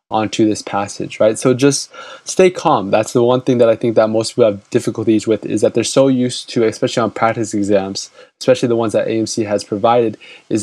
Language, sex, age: English, male, 20-39